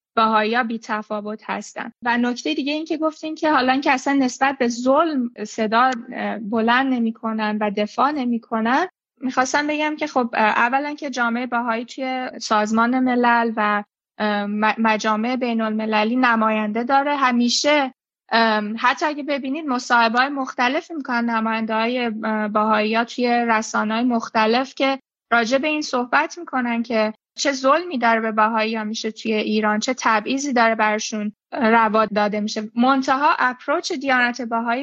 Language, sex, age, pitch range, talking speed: Persian, female, 20-39, 225-275 Hz, 140 wpm